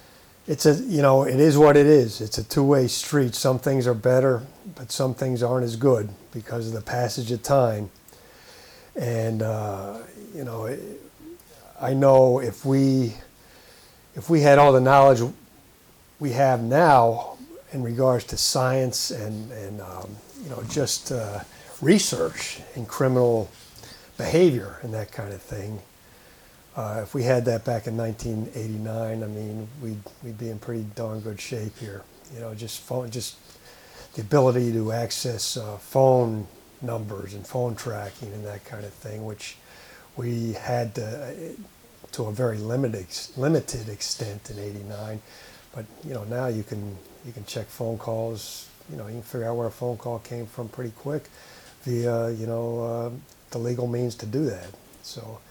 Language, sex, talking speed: English, male, 165 wpm